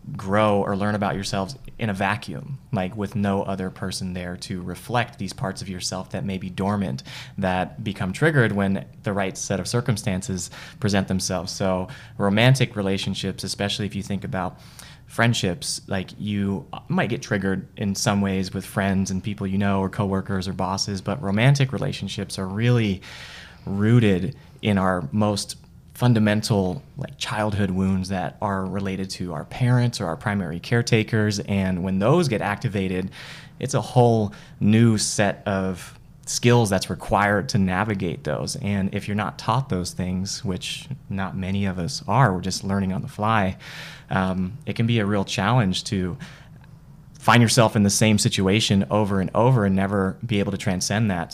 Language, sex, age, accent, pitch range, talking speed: English, male, 20-39, American, 95-120 Hz, 170 wpm